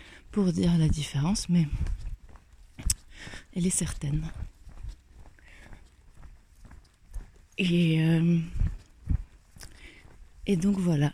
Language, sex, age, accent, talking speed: French, female, 30-49, French, 65 wpm